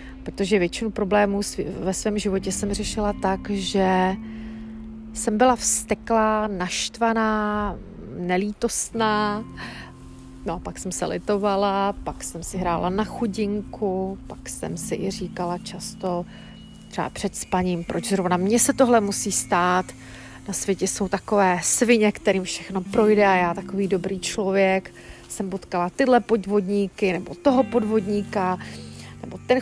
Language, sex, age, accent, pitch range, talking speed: Czech, female, 40-59, native, 190-220 Hz, 130 wpm